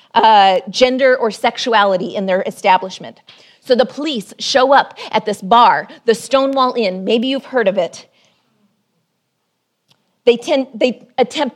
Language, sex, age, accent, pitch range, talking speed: English, female, 30-49, American, 205-255 Hz, 135 wpm